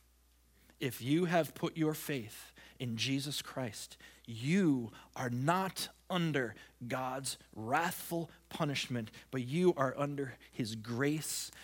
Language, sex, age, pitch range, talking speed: English, male, 30-49, 120-155 Hz, 115 wpm